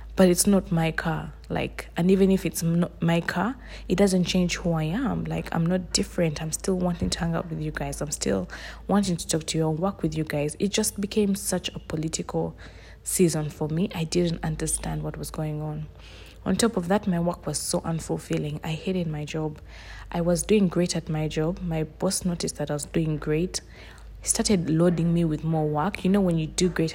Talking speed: 225 wpm